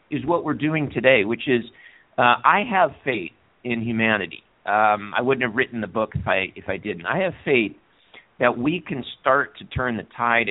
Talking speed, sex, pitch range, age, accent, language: 205 wpm, male, 100-115 Hz, 50-69, American, English